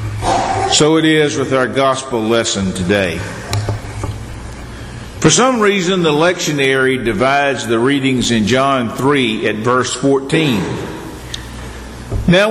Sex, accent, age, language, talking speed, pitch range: male, American, 50-69, English, 110 wpm, 115-180 Hz